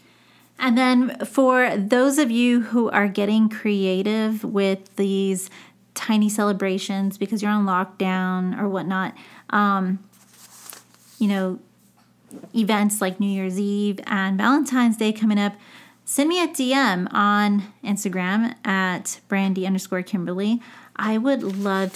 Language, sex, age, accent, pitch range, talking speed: English, female, 30-49, American, 195-220 Hz, 125 wpm